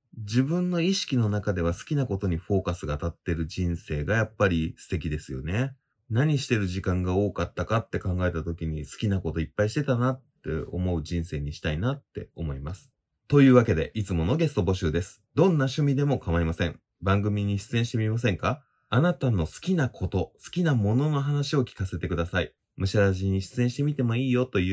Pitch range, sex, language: 90-130 Hz, male, Japanese